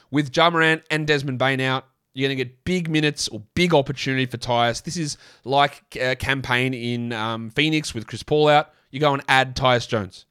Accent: Australian